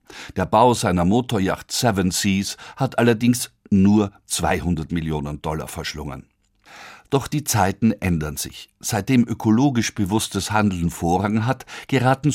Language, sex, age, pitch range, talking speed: German, male, 50-69, 100-130 Hz, 120 wpm